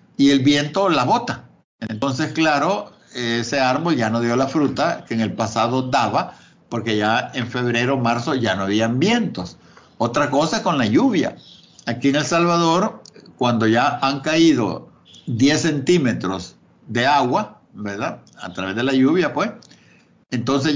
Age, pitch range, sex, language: 60-79, 120-165 Hz, male, Spanish